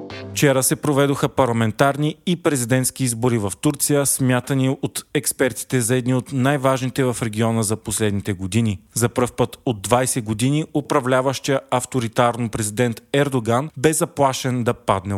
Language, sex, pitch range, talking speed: Bulgarian, male, 115-140 Hz, 140 wpm